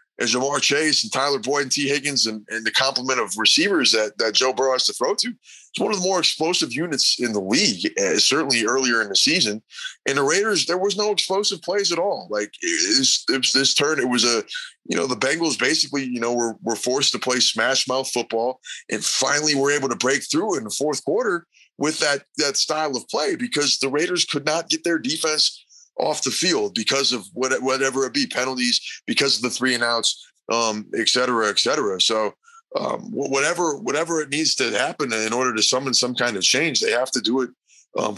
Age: 20-39